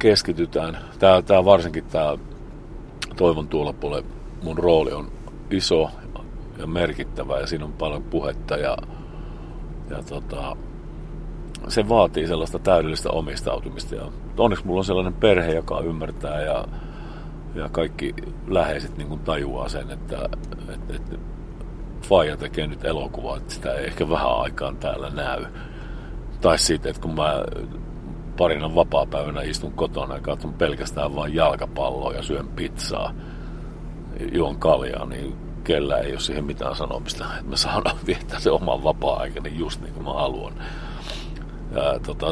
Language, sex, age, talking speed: Finnish, male, 50-69, 135 wpm